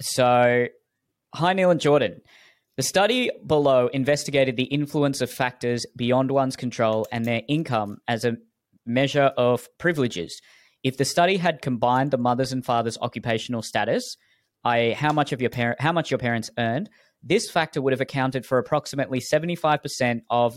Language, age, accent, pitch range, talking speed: English, 20-39, Australian, 115-140 Hz, 160 wpm